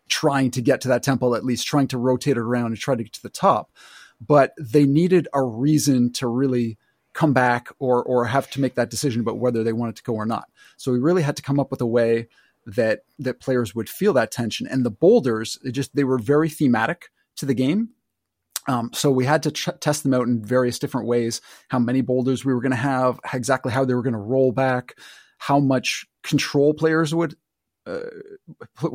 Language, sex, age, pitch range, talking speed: English, male, 30-49, 120-145 Hz, 220 wpm